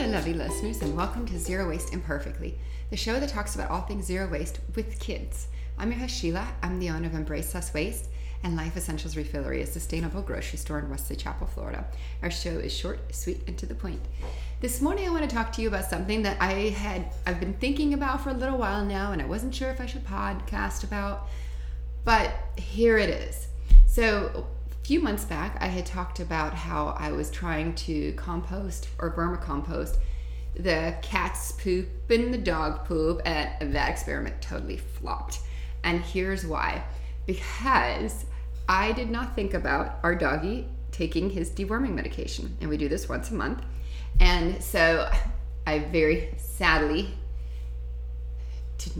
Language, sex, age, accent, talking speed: English, female, 30-49, American, 175 wpm